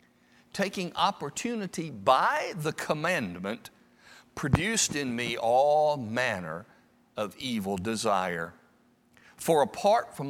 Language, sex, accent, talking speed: English, male, American, 95 wpm